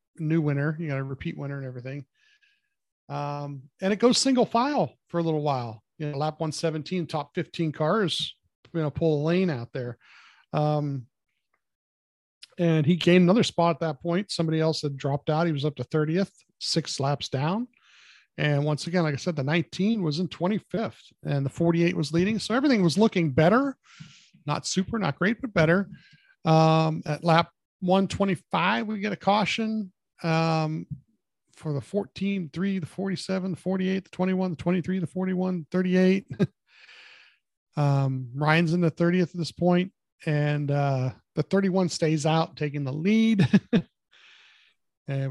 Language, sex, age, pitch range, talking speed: English, male, 40-59, 150-185 Hz, 165 wpm